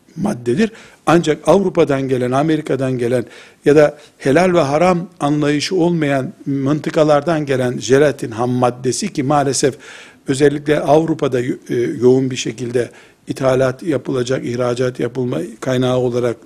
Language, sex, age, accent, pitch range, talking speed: Turkish, male, 60-79, native, 130-170 Hz, 115 wpm